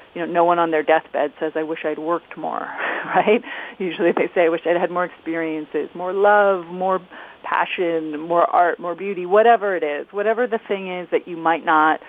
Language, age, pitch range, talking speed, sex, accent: English, 40-59, 160-215 Hz, 210 wpm, female, American